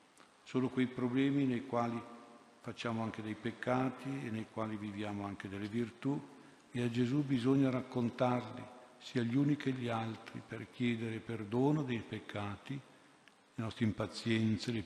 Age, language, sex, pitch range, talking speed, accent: 50-69, Italian, male, 105-125 Hz, 145 wpm, native